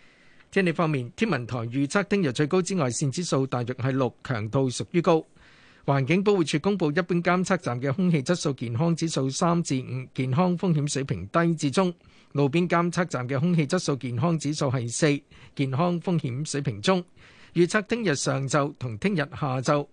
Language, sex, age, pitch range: Chinese, male, 50-69, 130-175 Hz